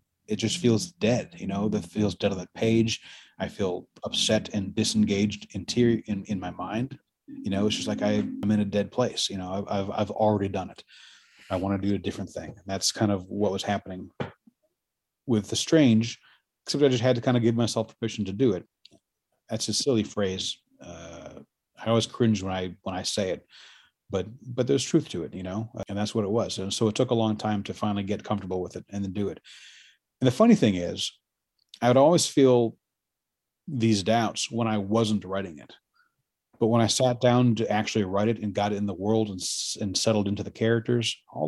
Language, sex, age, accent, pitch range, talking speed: Swedish, male, 30-49, American, 100-115 Hz, 220 wpm